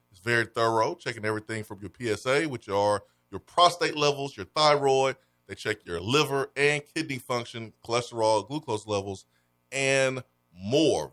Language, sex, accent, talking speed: English, male, American, 145 wpm